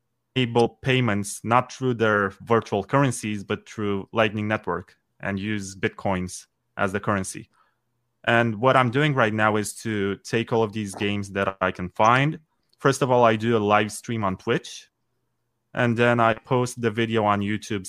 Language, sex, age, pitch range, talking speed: English, male, 20-39, 95-120 Hz, 175 wpm